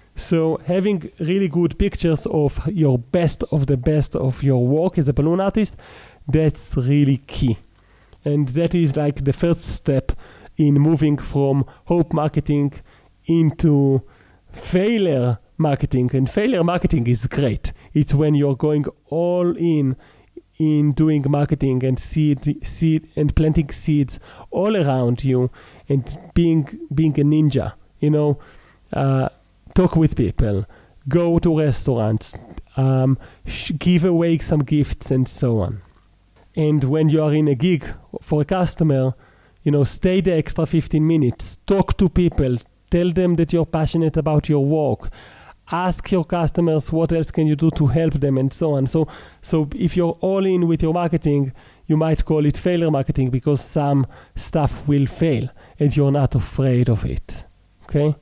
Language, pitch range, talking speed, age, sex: English, 130-165 Hz, 155 wpm, 30-49, male